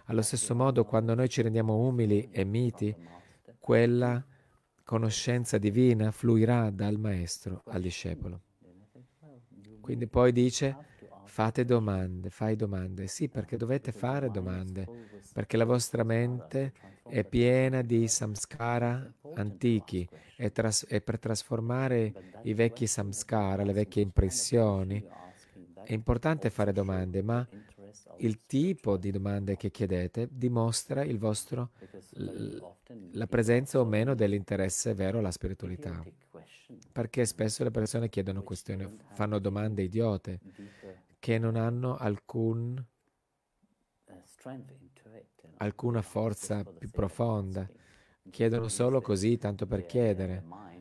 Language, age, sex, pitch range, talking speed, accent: Italian, 40-59, male, 100-120 Hz, 110 wpm, native